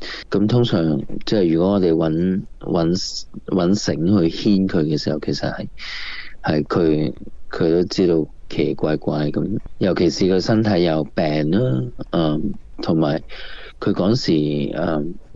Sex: male